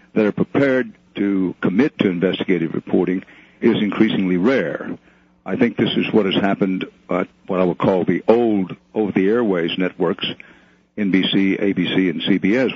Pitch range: 90-105 Hz